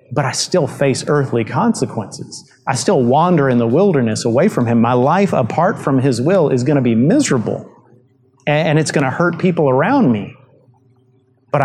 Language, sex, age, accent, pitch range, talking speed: English, male, 30-49, American, 125-155 Hz, 180 wpm